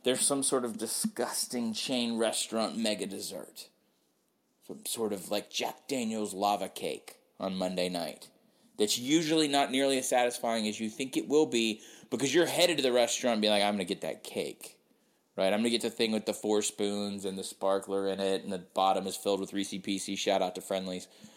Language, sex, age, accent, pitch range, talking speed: English, male, 30-49, American, 105-150 Hz, 200 wpm